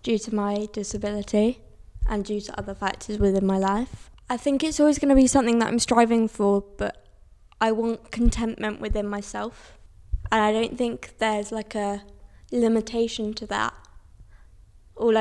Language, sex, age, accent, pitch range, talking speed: English, female, 20-39, British, 205-245 Hz, 160 wpm